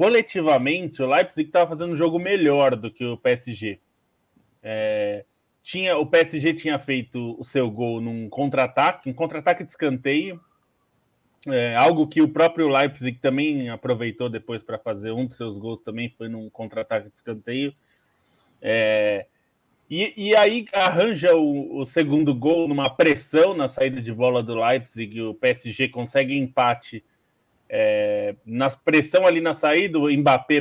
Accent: Brazilian